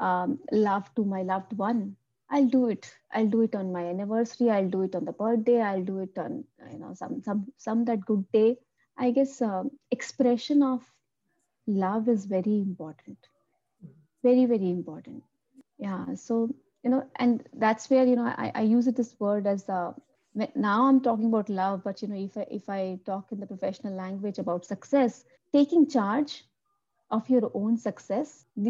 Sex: female